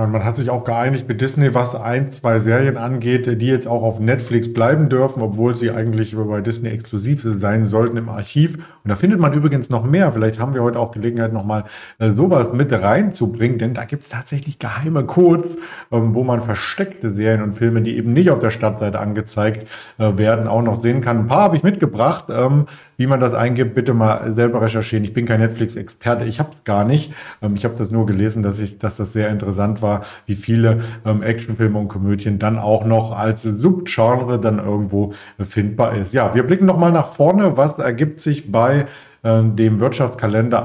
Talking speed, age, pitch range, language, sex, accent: 200 wpm, 40-59, 110-130 Hz, German, male, German